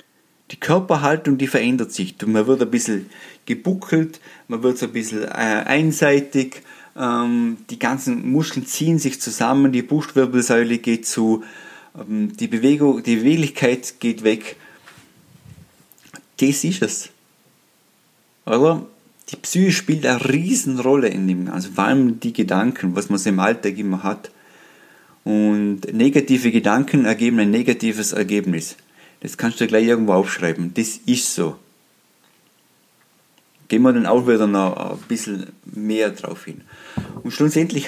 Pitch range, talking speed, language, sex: 110-150 Hz, 135 wpm, German, male